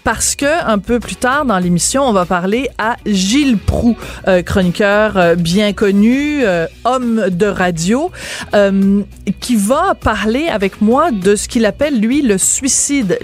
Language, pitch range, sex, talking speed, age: French, 185-240 Hz, female, 165 wpm, 30-49